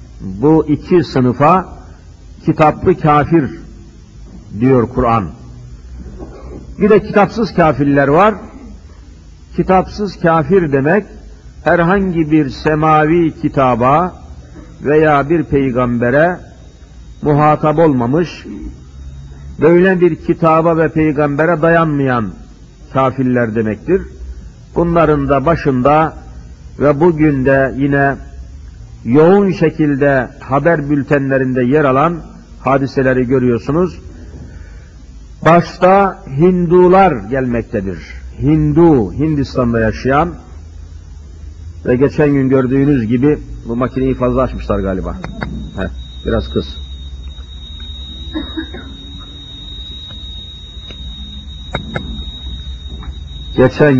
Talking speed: 75 wpm